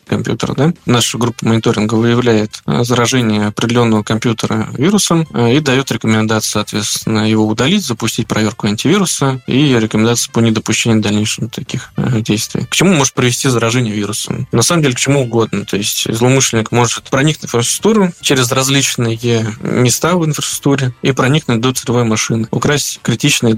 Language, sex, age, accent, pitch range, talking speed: Russian, male, 20-39, native, 110-130 Hz, 145 wpm